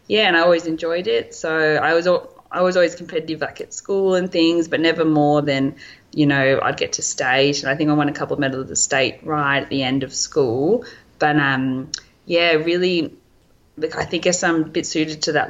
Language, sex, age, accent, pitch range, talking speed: English, female, 20-39, Australian, 145-170 Hz, 235 wpm